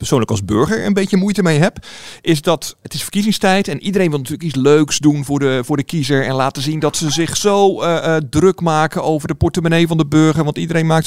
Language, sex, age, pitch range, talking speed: Dutch, male, 50-69, 145-205 Hz, 235 wpm